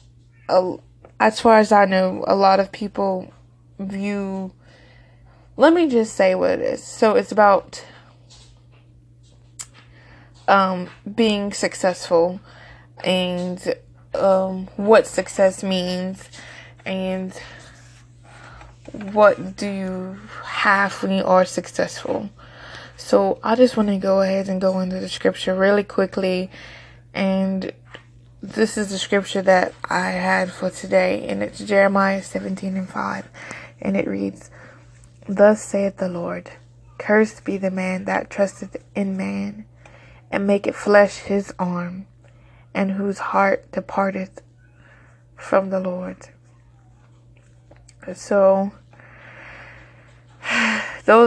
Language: English